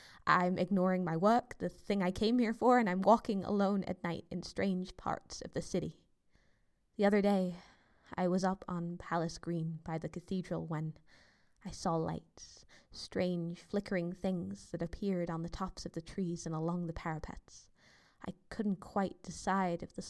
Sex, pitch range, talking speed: female, 175-200 Hz, 175 wpm